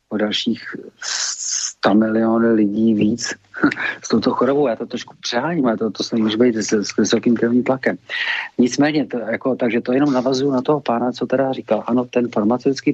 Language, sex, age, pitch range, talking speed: Czech, male, 40-59, 95-120 Hz, 210 wpm